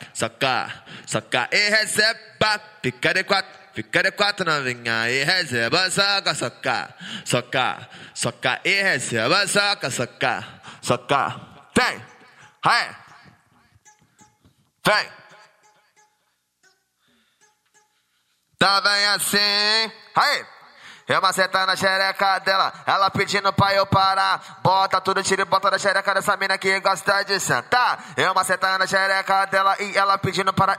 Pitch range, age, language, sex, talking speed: 165-200 Hz, 20-39, English, male, 125 wpm